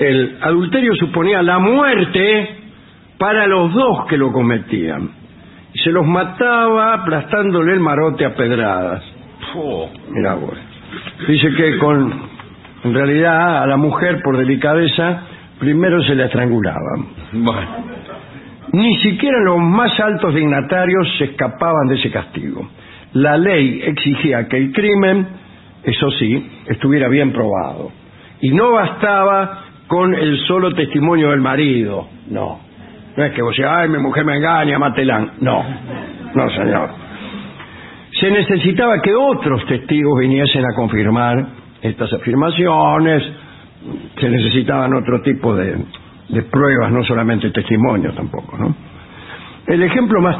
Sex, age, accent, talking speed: male, 60-79, Argentinian, 130 wpm